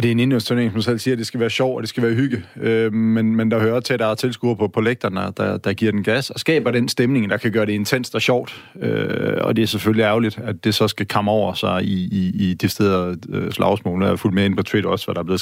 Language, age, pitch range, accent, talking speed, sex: Danish, 30-49, 105-120 Hz, native, 290 wpm, male